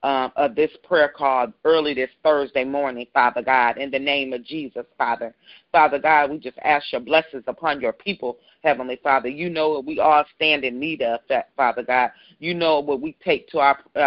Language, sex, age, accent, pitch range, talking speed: English, female, 40-59, American, 135-165 Hz, 195 wpm